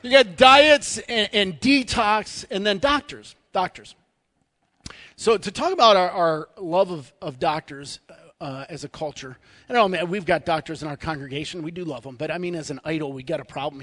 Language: English